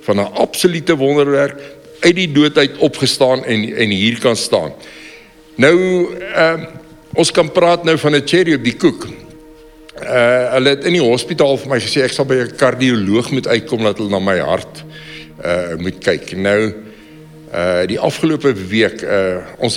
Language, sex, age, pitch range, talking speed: English, male, 60-79, 110-155 Hz, 170 wpm